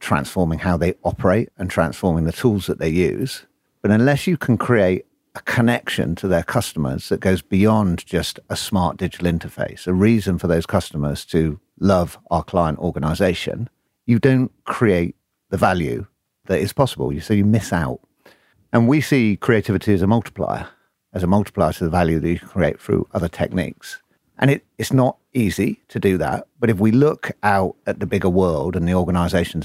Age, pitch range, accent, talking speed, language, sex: 50-69, 85-110 Hz, British, 180 wpm, English, male